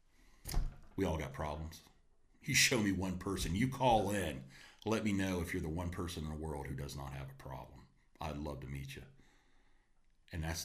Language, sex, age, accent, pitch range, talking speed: English, male, 40-59, American, 70-95 Hz, 205 wpm